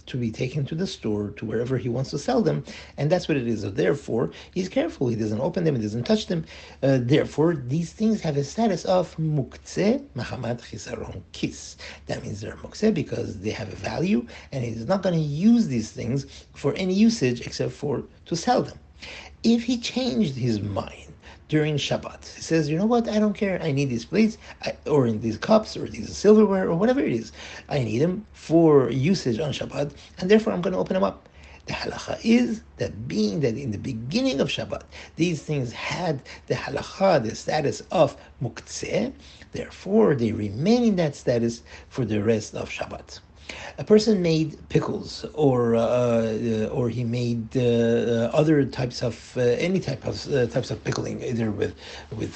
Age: 50-69